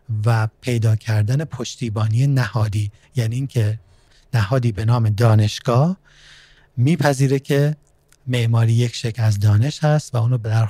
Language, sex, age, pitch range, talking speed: Persian, male, 30-49, 115-135 Hz, 125 wpm